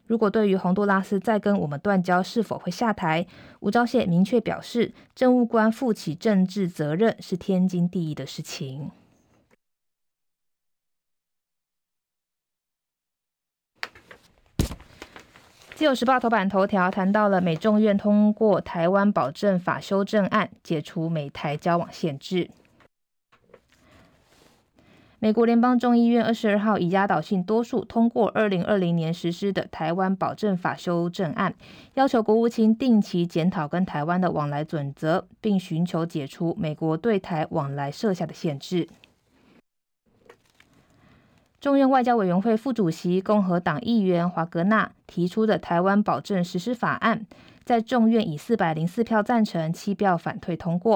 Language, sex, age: Chinese, female, 20-39